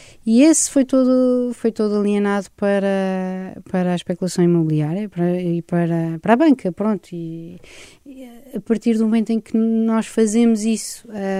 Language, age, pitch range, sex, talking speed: Portuguese, 20-39, 190-230 Hz, female, 145 wpm